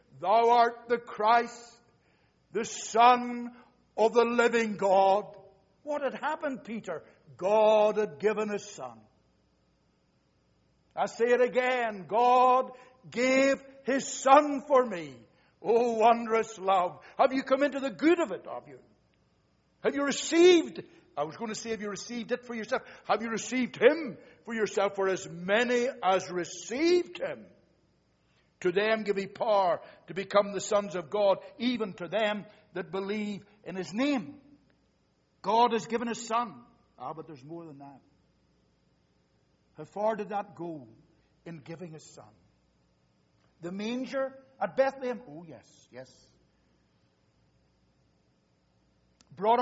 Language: English